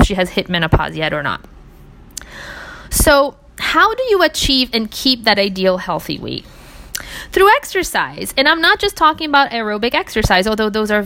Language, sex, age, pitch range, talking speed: English, female, 20-39, 180-225 Hz, 170 wpm